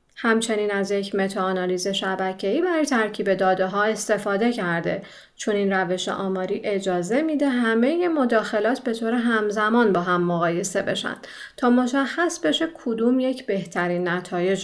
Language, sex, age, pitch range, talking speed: Persian, female, 40-59, 195-255 Hz, 145 wpm